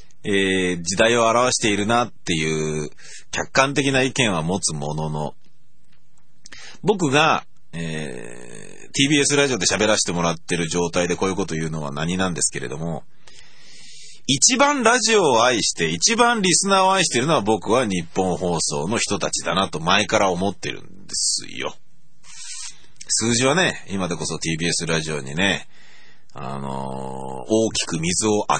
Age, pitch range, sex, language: 40-59, 85-135 Hz, male, Japanese